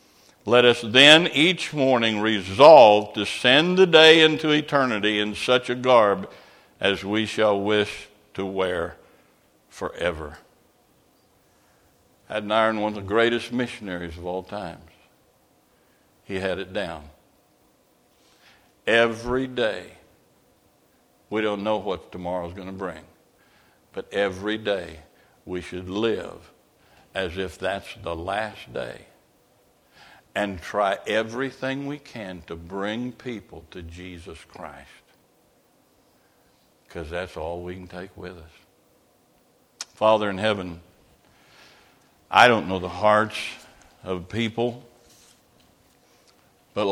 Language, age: English, 60-79